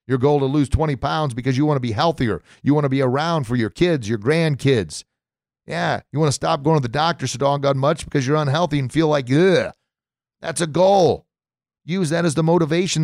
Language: English